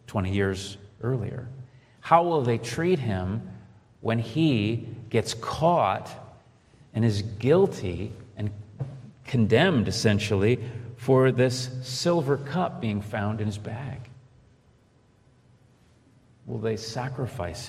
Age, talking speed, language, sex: 40-59, 100 wpm, English, male